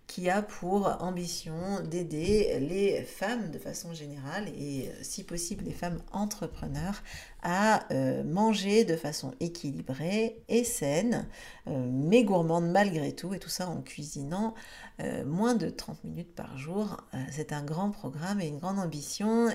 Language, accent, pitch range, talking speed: French, French, 165-220 Hz, 150 wpm